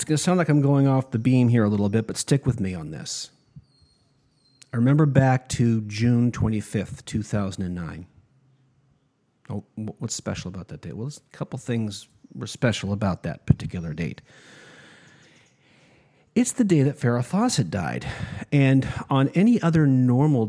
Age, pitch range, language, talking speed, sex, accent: 40-59, 110-140 Hz, English, 160 wpm, male, American